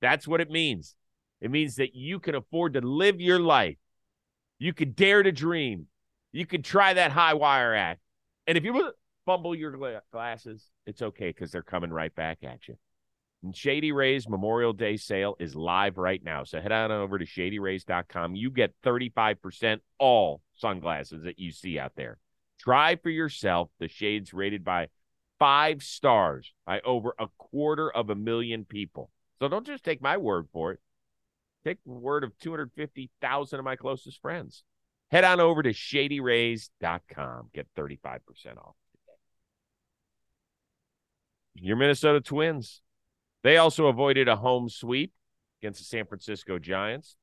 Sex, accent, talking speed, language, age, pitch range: male, American, 155 wpm, English, 40-59, 100-150 Hz